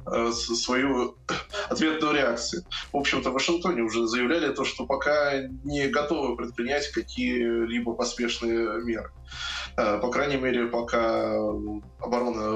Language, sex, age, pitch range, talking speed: Russian, male, 20-39, 115-140 Hz, 110 wpm